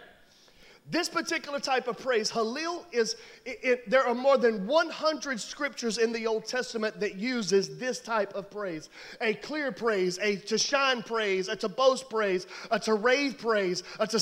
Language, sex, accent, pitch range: English, male, American, 225-310 Hz